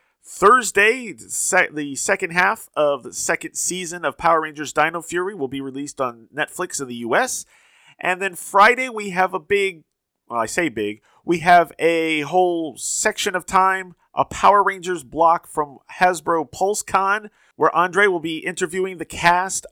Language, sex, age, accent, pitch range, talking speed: English, male, 30-49, American, 145-190 Hz, 160 wpm